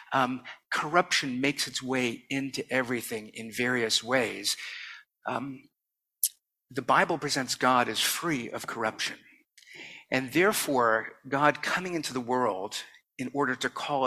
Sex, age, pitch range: male, 50-69, 125-155 Hz